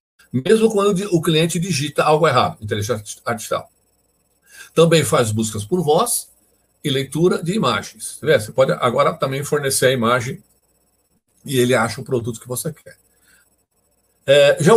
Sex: male